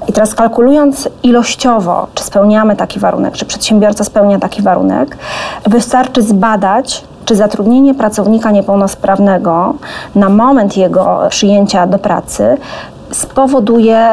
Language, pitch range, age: Polish, 200-235 Hz, 30-49